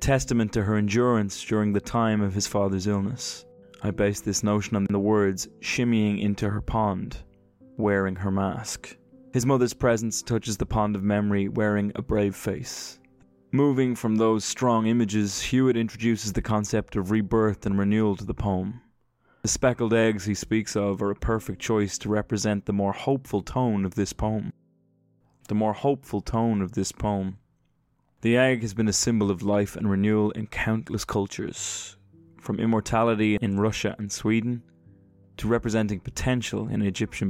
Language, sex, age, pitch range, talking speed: English, male, 20-39, 100-115 Hz, 165 wpm